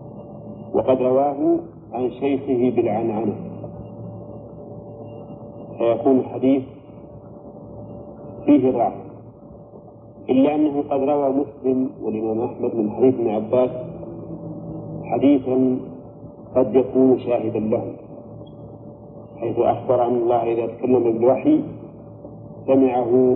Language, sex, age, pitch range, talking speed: Arabic, male, 50-69, 115-135 Hz, 85 wpm